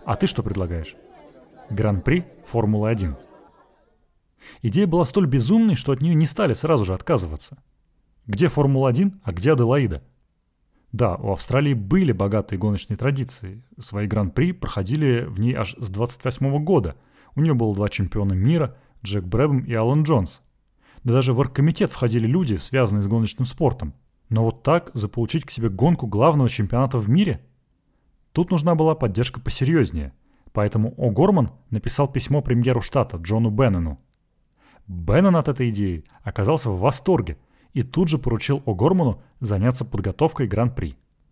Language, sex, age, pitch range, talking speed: Russian, male, 30-49, 105-145 Hz, 150 wpm